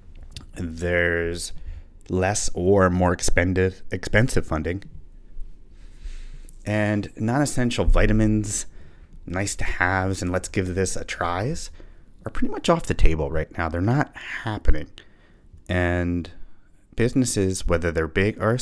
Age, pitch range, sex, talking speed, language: 30-49, 80-100 Hz, male, 105 wpm, English